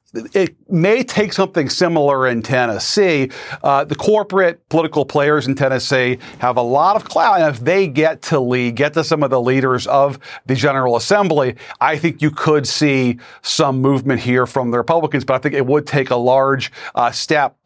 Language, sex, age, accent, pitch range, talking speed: English, male, 40-59, American, 130-175 Hz, 190 wpm